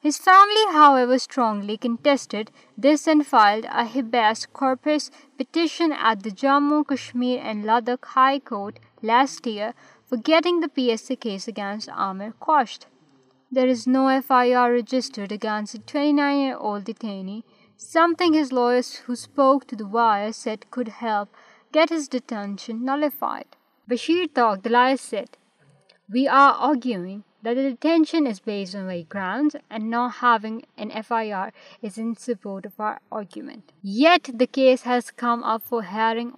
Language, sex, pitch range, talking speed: Urdu, female, 220-275 Hz, 145 wpm